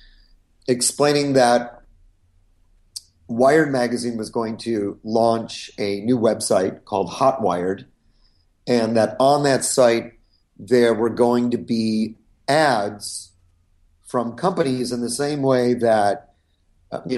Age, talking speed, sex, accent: 40-59, 110 wpm, male, American